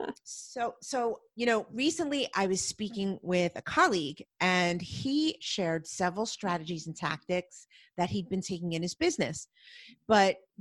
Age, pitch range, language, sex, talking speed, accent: 40-59, 185-255 Hz, English, female, 145 wpm, American